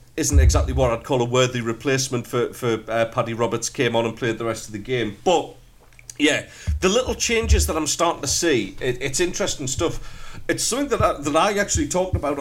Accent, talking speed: British, 215 wpm